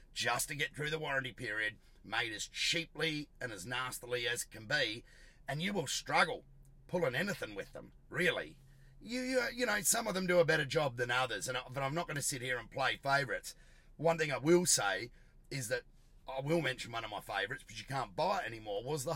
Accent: Australian